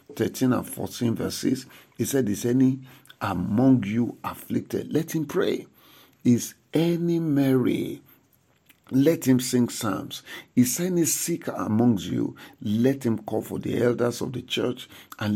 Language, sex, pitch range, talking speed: English, male, 115-150 Hz, 140 wpm